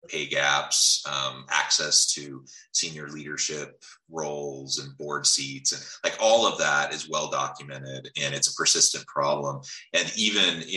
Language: English